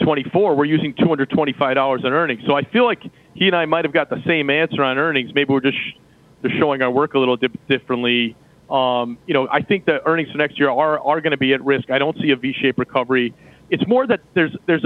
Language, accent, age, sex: English, American, 40-59, male